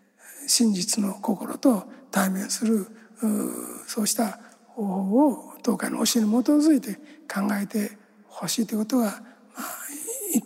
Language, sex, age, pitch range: Japanese, male, 60-79, 220-250 Hz